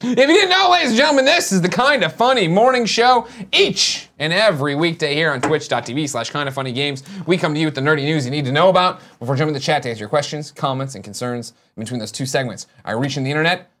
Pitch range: 145-210 Hz